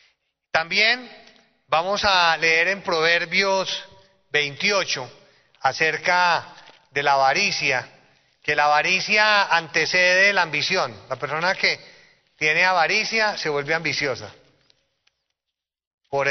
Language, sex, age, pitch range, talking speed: Spanish, male, 30-49, 140-175 Hz, 95 wpm